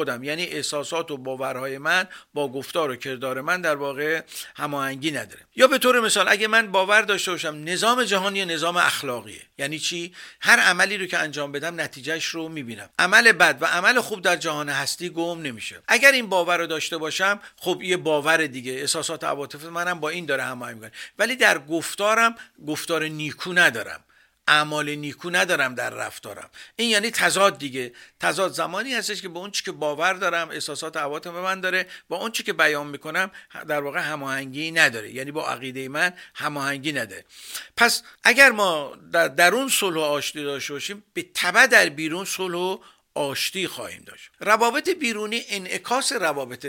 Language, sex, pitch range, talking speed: Persian, male, 145-190 Hz, 170 wpm